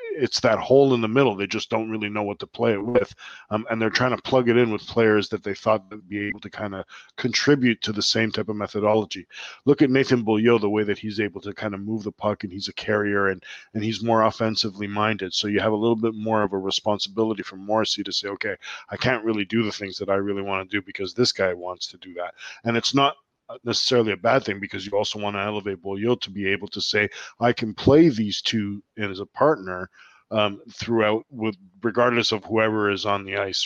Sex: male